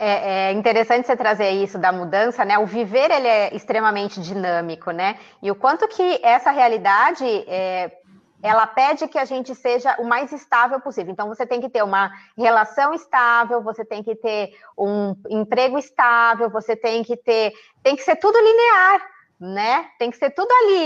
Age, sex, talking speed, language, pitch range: 20-39, female, 175 wpm, Portuguese, 210-270 Hz